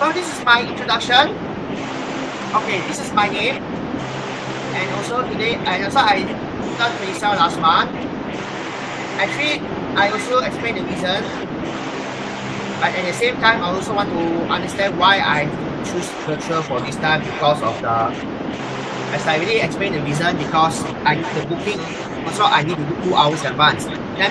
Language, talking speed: English, 165 wpm